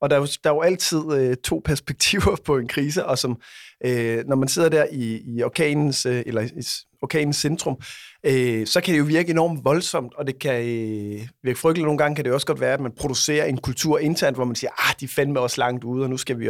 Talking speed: 245 wpm